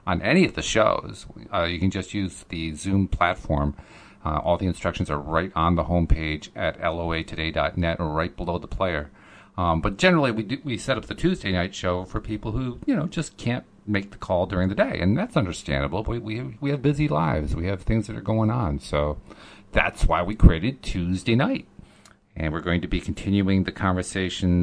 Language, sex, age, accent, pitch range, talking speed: English, male, 50-69, American, 85-115 Hz, 210 wpm